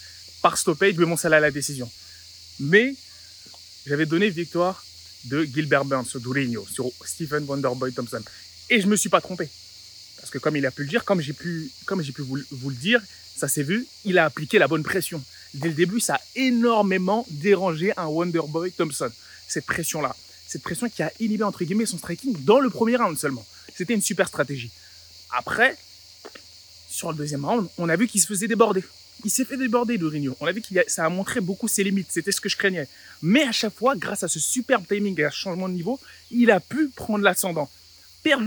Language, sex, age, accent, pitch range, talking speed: French, male, 20-39, French, 145-220 Hz, 210 wpm